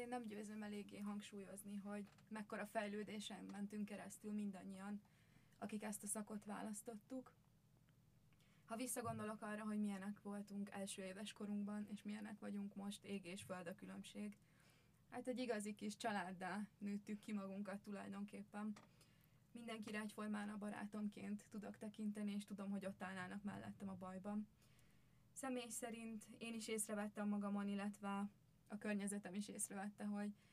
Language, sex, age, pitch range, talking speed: Hungarian, female, 20-39, 195-215 Hz, 135 wpm